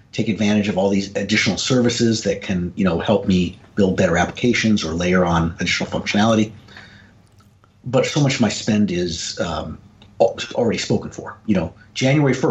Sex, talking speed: male, 170 wpm